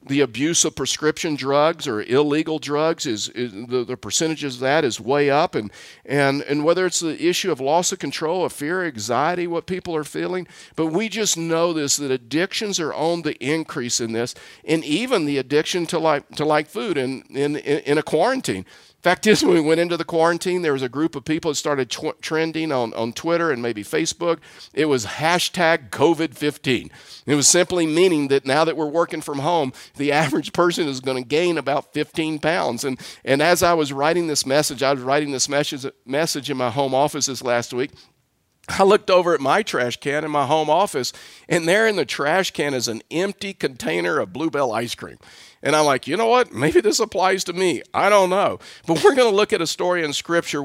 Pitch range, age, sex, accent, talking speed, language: 140-175 Hz, 50-69, male, American, 215 wpm, English